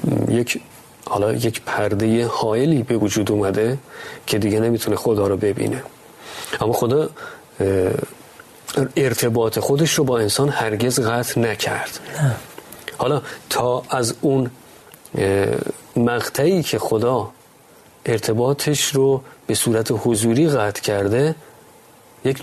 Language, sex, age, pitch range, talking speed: Persian, male, 30-49, 105-135 Hz, 105 wpm